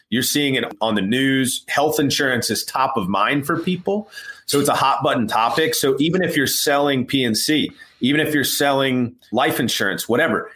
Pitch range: 115-145 Hz